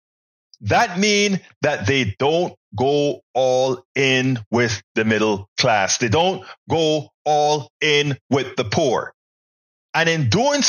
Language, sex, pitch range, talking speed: English, male, 130-190 Hz, 130 wpm